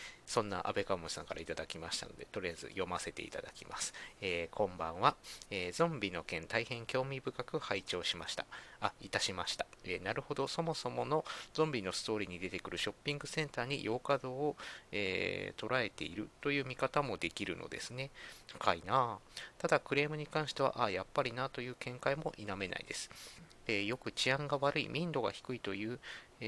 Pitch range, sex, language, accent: 105-140 Hz, male, Japanese, native